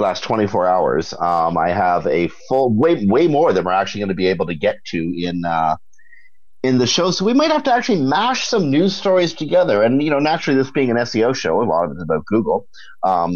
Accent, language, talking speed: American, English, 240 wpm